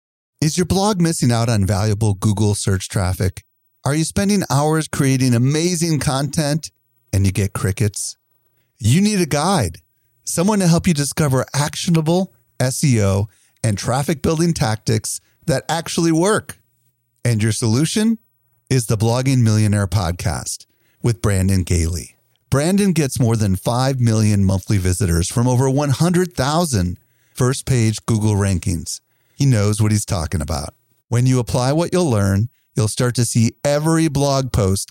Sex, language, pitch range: male, English, 105-145 Hz